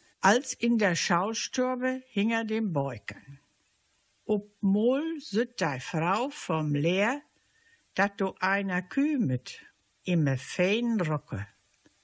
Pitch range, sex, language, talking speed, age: 160-240 Hz, female, German, 110 wpm, 60-79